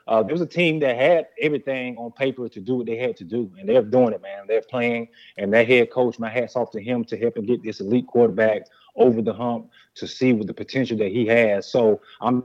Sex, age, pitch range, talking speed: male, 30-49, 110-125 Hz, 255 wpm